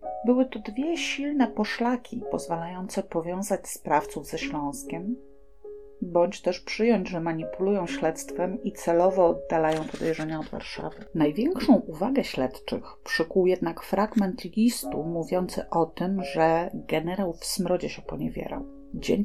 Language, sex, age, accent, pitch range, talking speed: Polish, female, 40-59, native, 155-210 Hz, 120 wpm